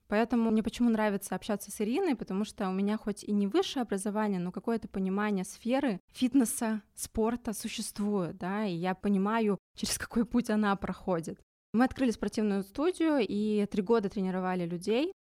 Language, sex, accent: Russian, female, native